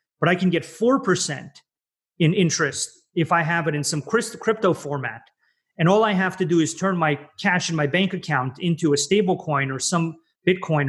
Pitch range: 150-185 Hz